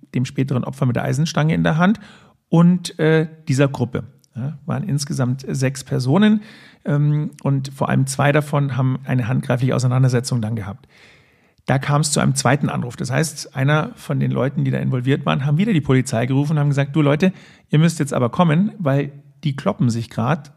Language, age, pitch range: German, 40-59, 135-160 Hz